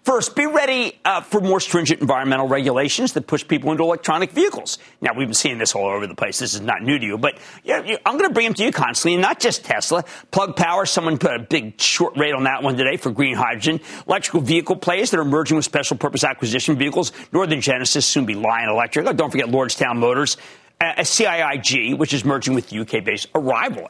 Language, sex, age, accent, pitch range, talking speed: English, male, 50-69, American, 135-195 Hz, 225 wpm